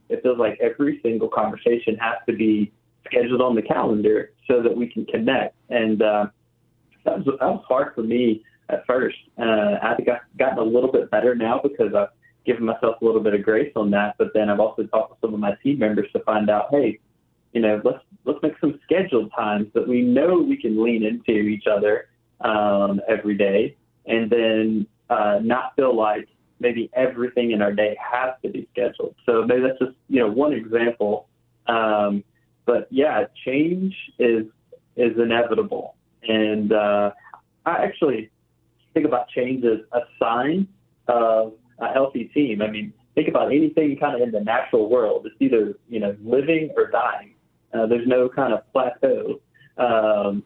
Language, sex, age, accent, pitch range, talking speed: English, male, 30-49, American, 110-130 Hz, 185 wpm